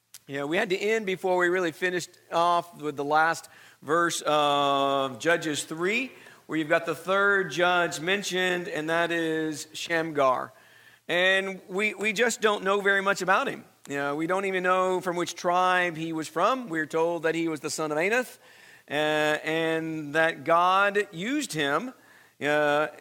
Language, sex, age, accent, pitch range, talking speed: English, male, 50-69, American, 155-185 Hz, 170 wpm